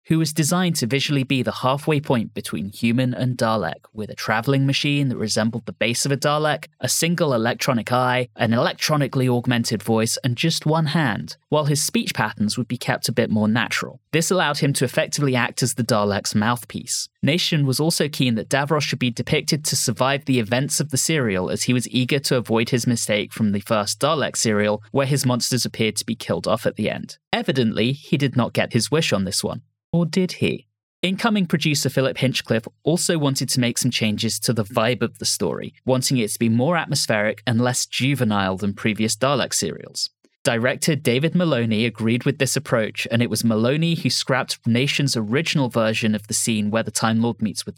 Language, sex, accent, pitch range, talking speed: English, male, British, 115-145 Hz, 205 wpm